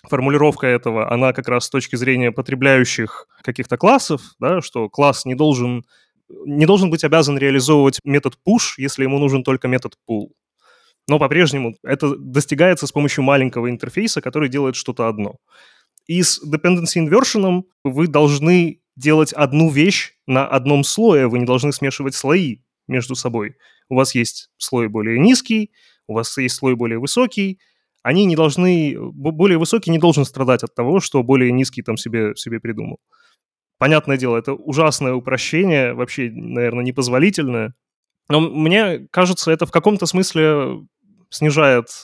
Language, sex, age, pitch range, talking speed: Ukrainian, male, 20-39, 130-165 Hz, 150 wpm